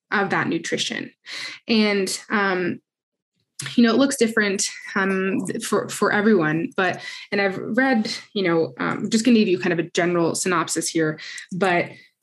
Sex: female